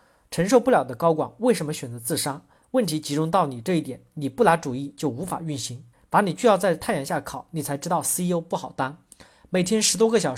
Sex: male